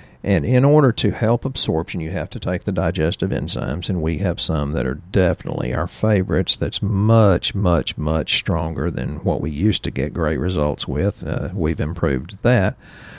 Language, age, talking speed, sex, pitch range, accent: English, 50-69, 180 wpm, male, 80-110 Hz, American